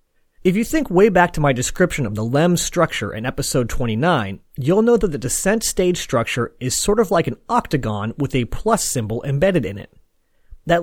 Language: English